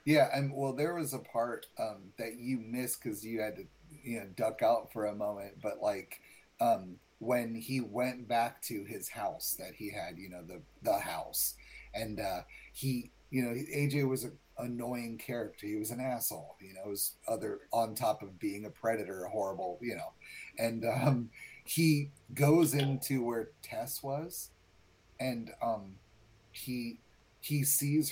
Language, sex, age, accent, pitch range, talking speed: English, male, 30-49, American, 115-135 Hz, 175 wpm